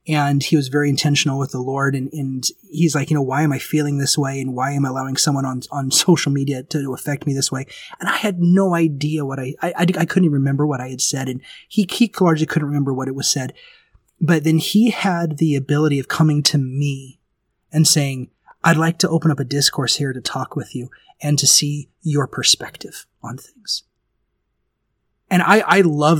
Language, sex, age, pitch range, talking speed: English, male, 30-49, 140-170 Hz, 215 wpm